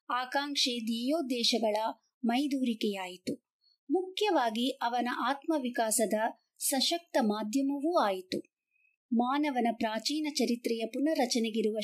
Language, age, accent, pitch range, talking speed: Kannada, 50-69, native, 230-290 Hz, 65 wpm